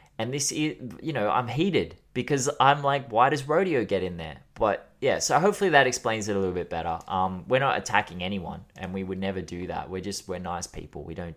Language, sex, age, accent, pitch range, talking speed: English, male, 20-39, Australian, 90-140 Hz, 240 wpm